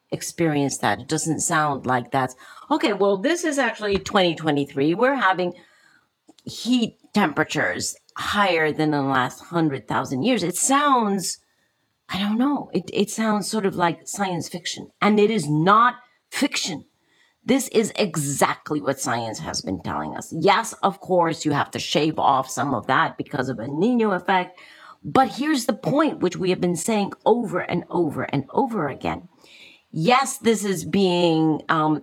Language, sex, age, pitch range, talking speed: English, female, 40-59, 150-220 Hz, 165 wpm